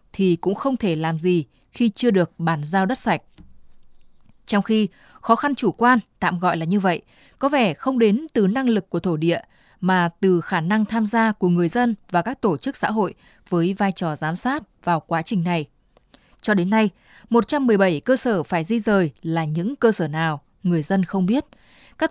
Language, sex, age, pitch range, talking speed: Vietnamese, female, 20-39, 175-225 Hz, 210 wpm